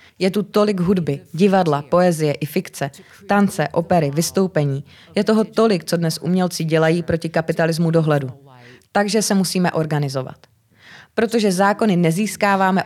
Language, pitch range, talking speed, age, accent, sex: Czech, 160-195 Hz, 130 wpm, 30-49, native, female